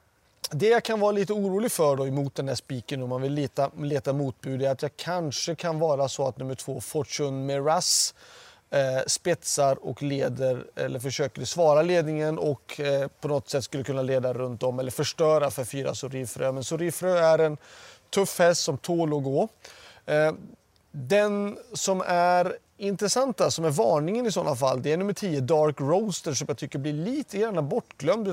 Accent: native